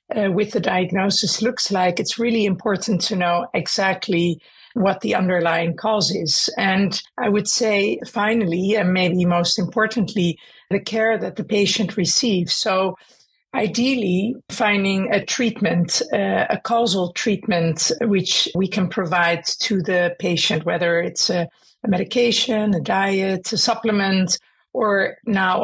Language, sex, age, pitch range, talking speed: English, female, 50-69, 175-215 Hz, 140 wpm